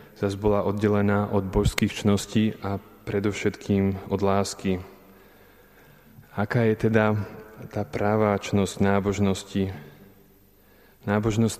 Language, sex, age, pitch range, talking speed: Slovak, male, 20-39, 100-105 Hz, 95 wpm